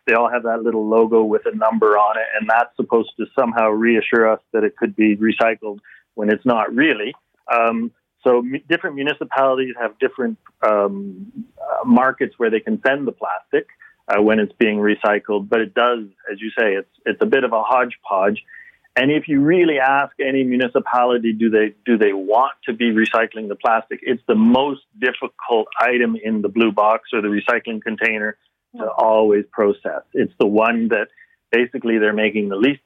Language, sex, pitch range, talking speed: English, male, 110-135 Hz, 190 wpm